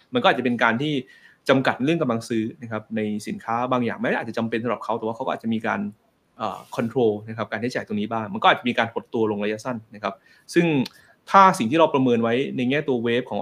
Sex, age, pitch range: male, 20-39, 110-135 Hz